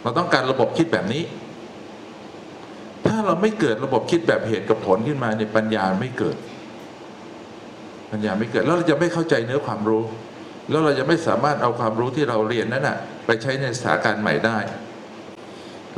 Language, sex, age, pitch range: Thai, male, 60-79, 110-170 Hz